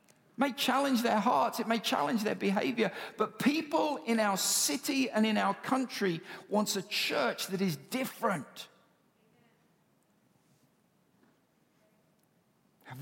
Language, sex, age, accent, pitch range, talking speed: English, male, 50-69, British, 155-200 Hz, 115 wpm